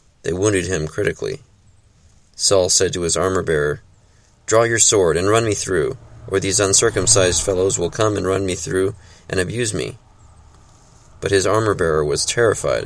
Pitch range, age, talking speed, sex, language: 90-105 Hz, 30-49, 160 wpm, male, English